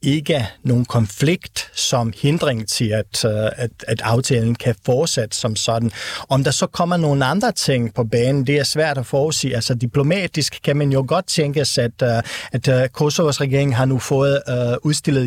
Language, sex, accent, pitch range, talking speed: Danish, male, native, 120-145 Hz, 165 wpm